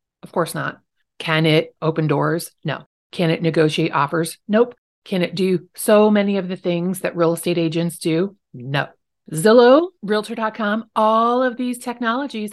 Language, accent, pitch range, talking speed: English, American, 160-210 Hz, 160 wpm